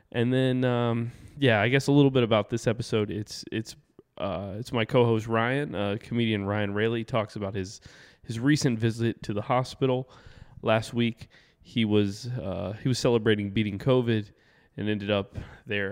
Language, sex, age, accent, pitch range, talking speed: English, male, 20-39, American, 105-125 Hz, 175 wpm